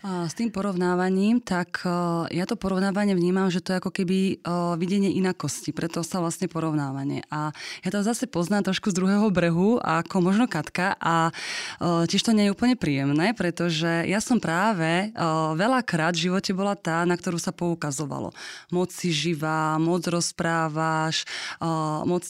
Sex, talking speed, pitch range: female, 155 wpm, 165-195 Hz